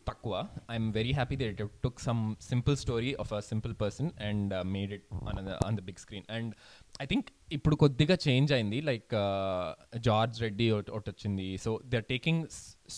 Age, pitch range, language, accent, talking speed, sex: 20-39, 105-135 Hz, Telugu, native, 190 wpm, male